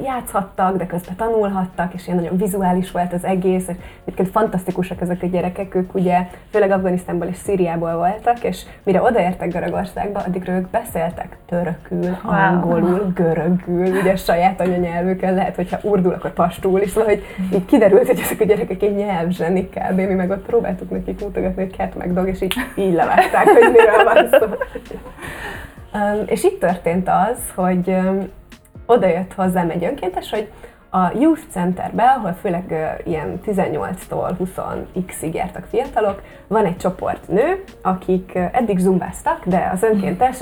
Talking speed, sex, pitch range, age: 155 wpm, female, 175-200 Hz, 20-39